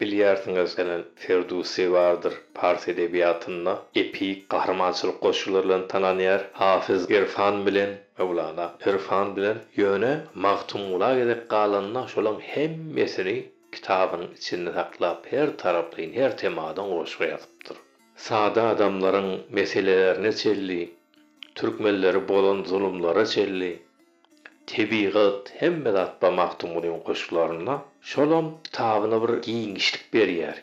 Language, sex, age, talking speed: Persian, male, 50-69, 100 wpm